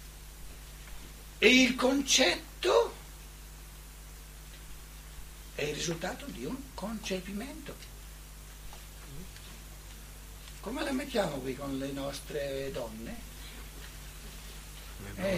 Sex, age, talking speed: male, 60-79, 70 wpm